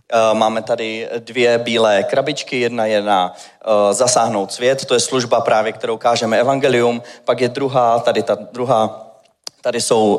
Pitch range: 110-135 Hz